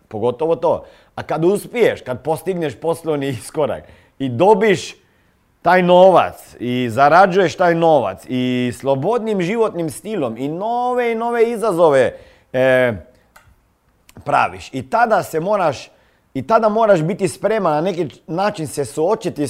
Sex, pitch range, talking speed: male, 125-185 Hz, 130 wpm